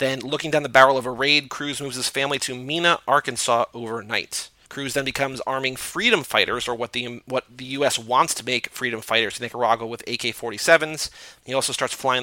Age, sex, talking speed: 30-49, male, 200 wpm